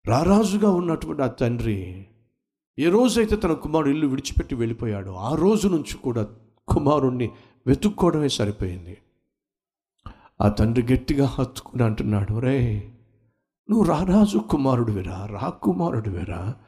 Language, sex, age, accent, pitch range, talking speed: Telugu, male, 60-79, native, 110-175 Hz, 105 wpm